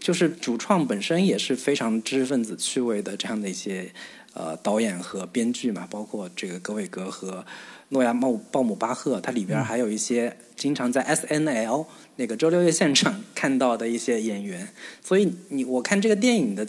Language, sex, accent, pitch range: Chinese, male, native, 120-180 Hz